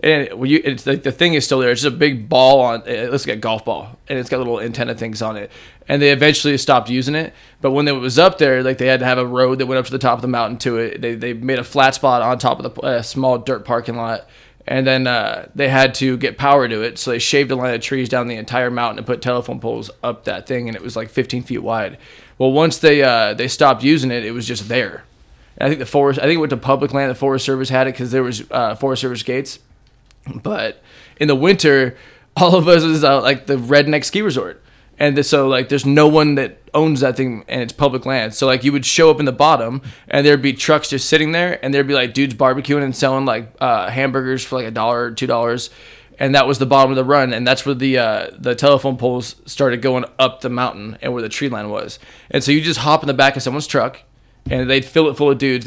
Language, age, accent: English, 20-39, American